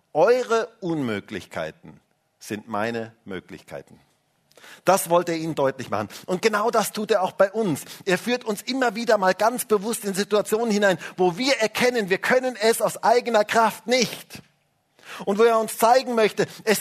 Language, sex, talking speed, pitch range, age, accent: German, male, 170 wpm, 150-220 Hz, 50-69, German